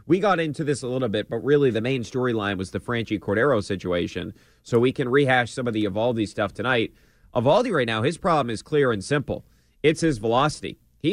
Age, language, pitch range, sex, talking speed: 30-49, English, 105-135 Hz, male, 215 wpm